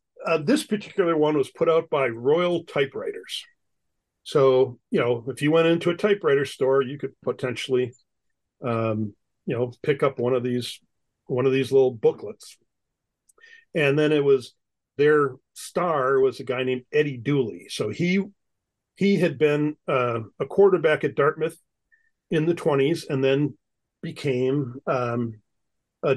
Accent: American